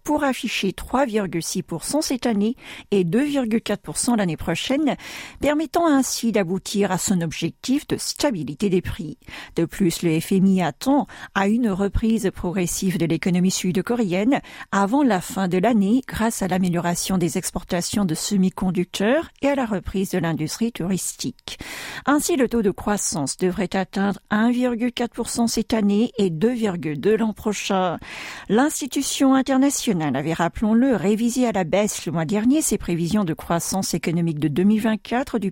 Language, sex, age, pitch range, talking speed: French, female, 50-69, 175-240 Hz, 140 wpm